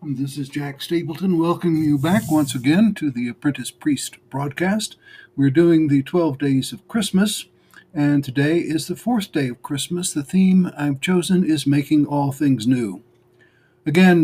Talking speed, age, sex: 165 wpm, 60-79, male